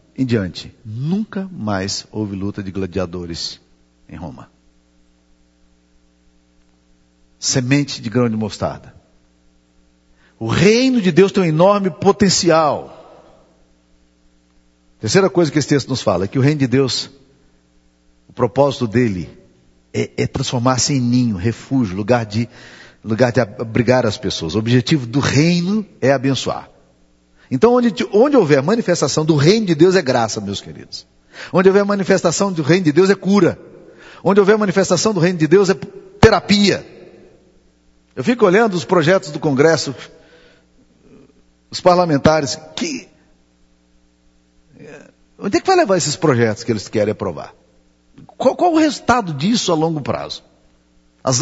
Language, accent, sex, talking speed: Portuguese, Brazilian, male, 135 wpm